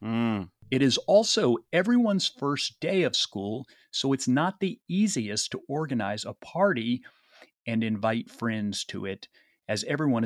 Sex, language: male, English